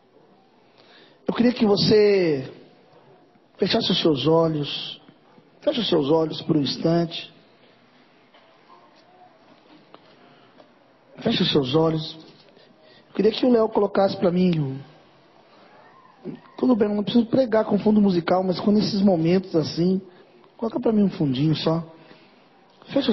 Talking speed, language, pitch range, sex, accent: 120 wpm, Portuguese, 165-215 Hz, male, Brazilian